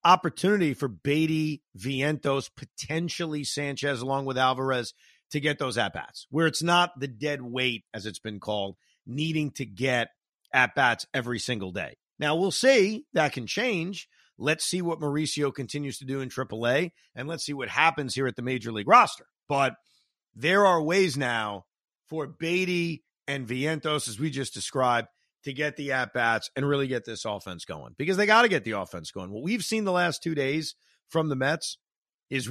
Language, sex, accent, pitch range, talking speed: English, male, American, 125-160 Hz, 180 wpm